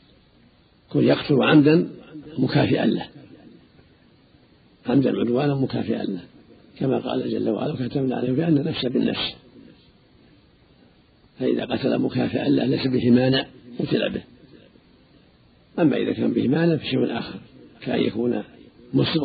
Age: 50-69